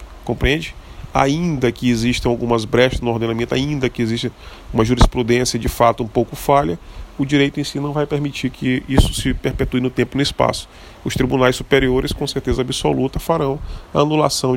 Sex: male